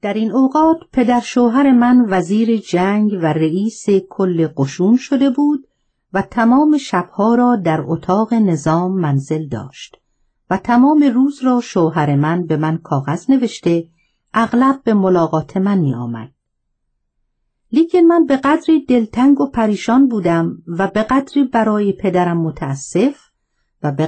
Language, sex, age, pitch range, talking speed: Persian, female, 50-69, 170-255 Hz, 135 wpm